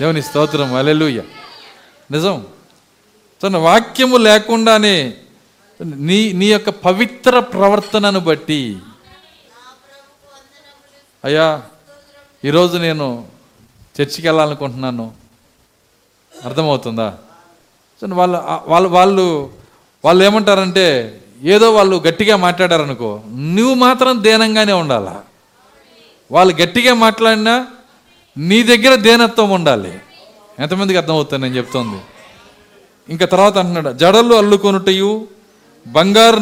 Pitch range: 160-225 Hz